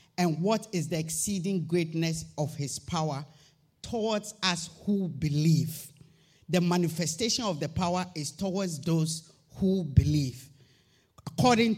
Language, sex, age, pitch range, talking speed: English, male, 50-69, 150-210 Hz, 120 wpm